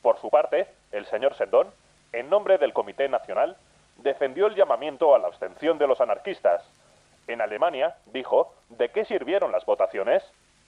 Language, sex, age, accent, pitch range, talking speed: Spanish, male, 30-49, Spanish, 95-135 Hz, 155 wpm